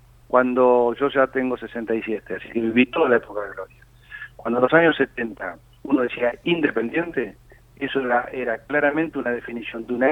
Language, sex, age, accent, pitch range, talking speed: Spanish, male, 40-59, Argentinian, 120-150 Hz, 170 wpm